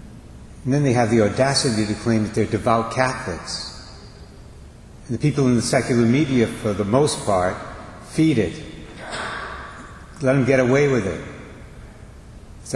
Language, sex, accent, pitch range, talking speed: English, male, American, 110-130 Hz, 150 wpm